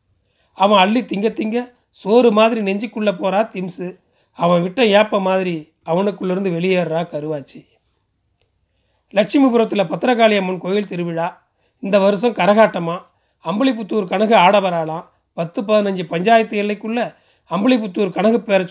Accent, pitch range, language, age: native, 175-220 Hz, Tamil, 30-49